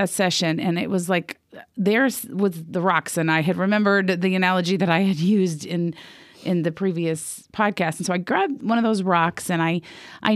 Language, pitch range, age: English, 165-200 Hz, 40-59